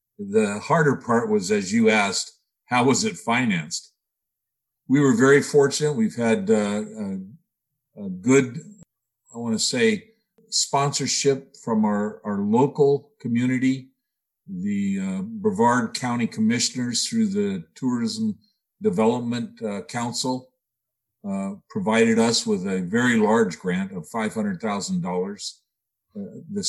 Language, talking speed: English, 120 wpm